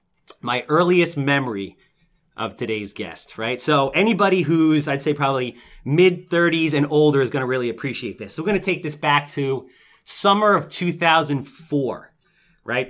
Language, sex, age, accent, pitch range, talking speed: English, male, 30-49, American, 130-165 Hz, 160 wpm